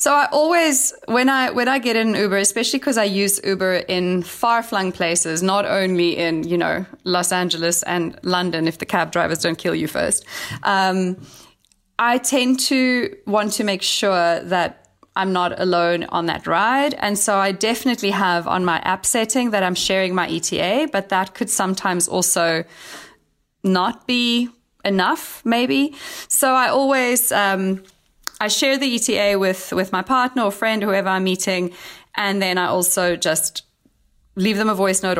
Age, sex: 20-39, female